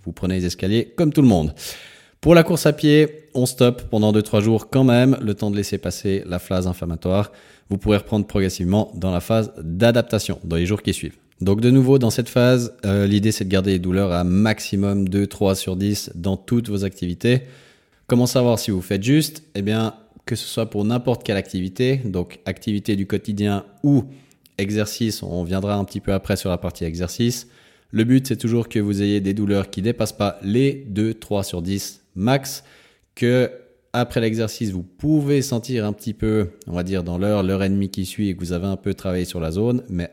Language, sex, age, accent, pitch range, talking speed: French, male, 30-49, French, 95-115 Hz, 215 wpm